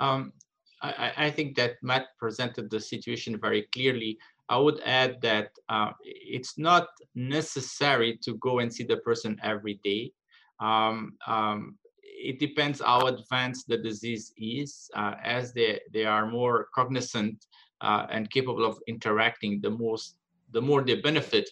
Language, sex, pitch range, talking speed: English, male, 110-145 Hz, 150 wpm